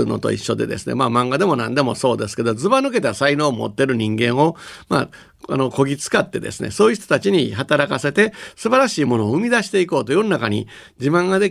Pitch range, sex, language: 120-180 Hz, male, Japanese